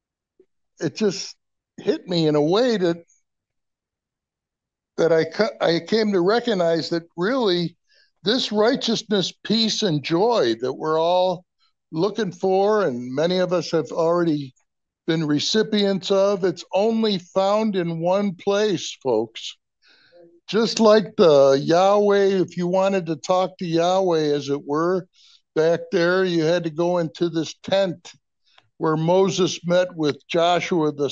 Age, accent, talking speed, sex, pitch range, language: 60-79, American, 140 wpm, male, 165-200 Hz, English